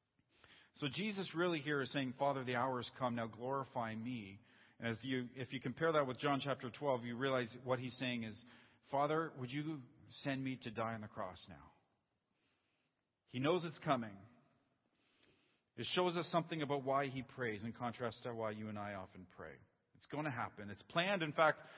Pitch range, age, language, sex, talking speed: 120-150 Hz, 40-59, English, male, 190 wpm